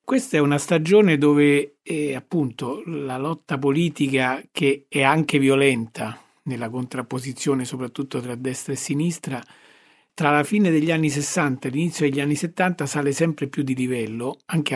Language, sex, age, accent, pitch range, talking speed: Italian, male, 50-69, native, 130-155 Hz, 155 wpm